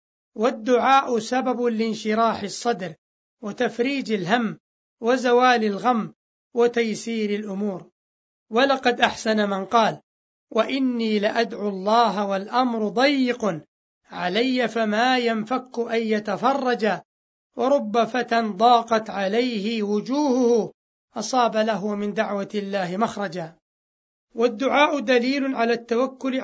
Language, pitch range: Arabic, 210-250 Hz